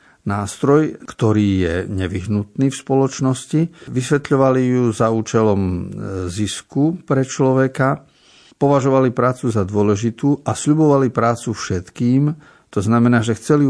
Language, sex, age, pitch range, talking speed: Slovak, male, 50-69, 100-130 Hz, 110 wpm